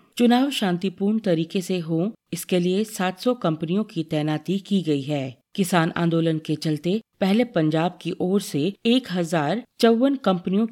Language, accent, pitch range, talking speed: Hindi, native, 160-210 Hz, 145 wpm